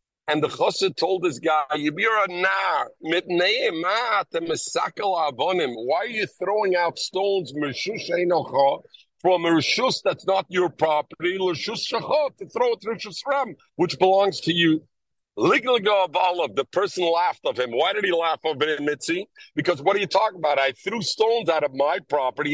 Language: English